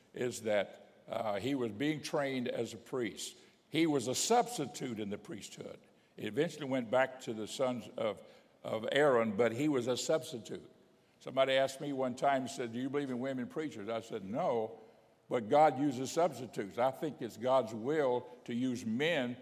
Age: 60-79